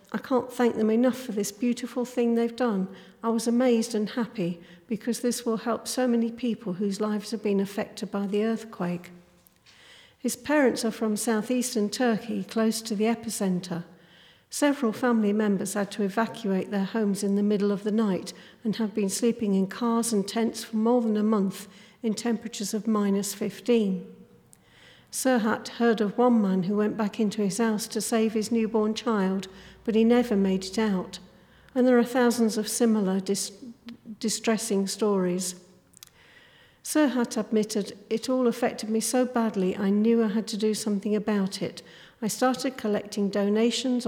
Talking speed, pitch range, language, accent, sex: 170 wpm, 200-230 Hz, English, British, female